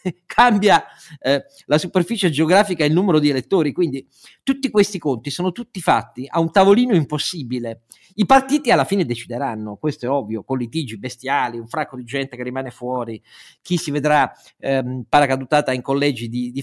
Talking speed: 175 wpm